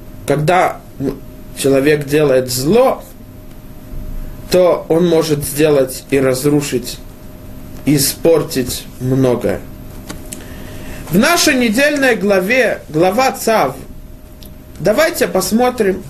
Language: Russian